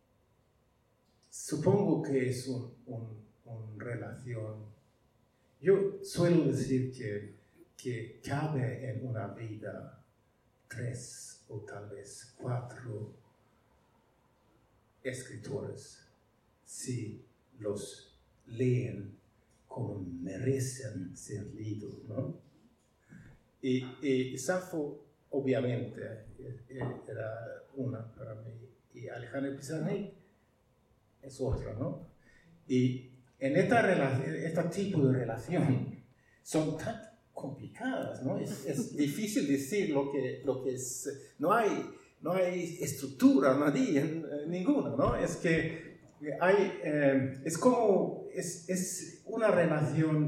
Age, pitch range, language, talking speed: 50-69, 125-155 Hz, Spanish, 100 wpm